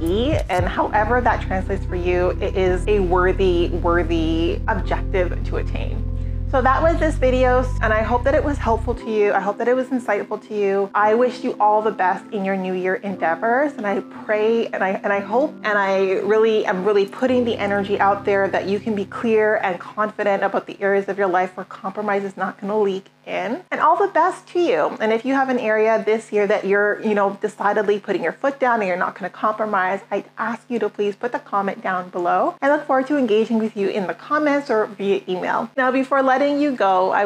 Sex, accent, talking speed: female, American, 230 wpm